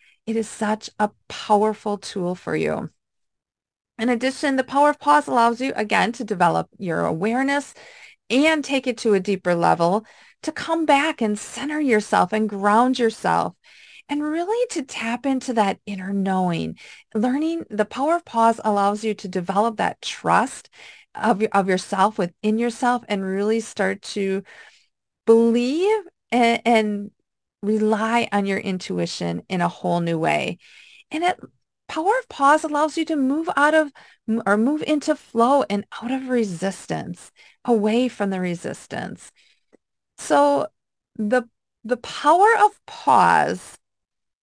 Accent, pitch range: American, 200-275 Hz